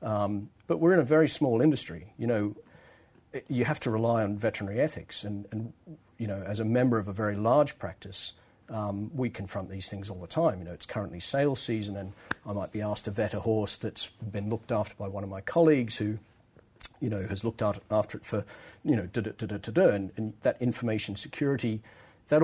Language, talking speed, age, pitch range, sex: English, 225 wpm, 40-59, 100-120 Hz, male